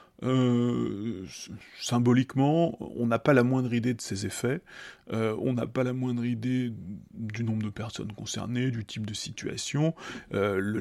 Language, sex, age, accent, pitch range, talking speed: French, male, 30-49, French, 115-140 Hz, 160 wpm